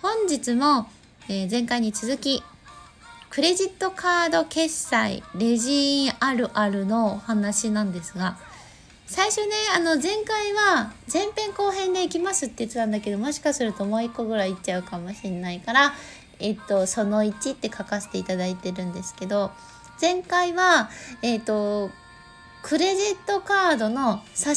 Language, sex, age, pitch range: Japanese, female, 20-39, 210-300 Hz